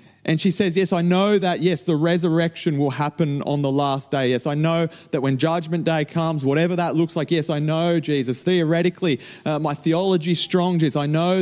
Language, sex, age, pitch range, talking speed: English, male, 30-49, 150-180 Hz, 210 wpm